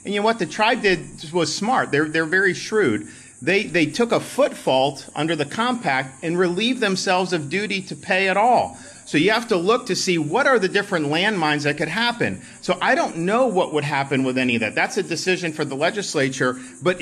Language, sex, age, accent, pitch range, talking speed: English, male, 40-59, American, 130-180 Hz, 225 wpm